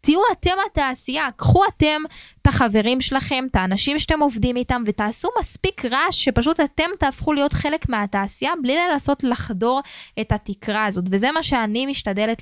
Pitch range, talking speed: 210-275 Hz, 155 wpm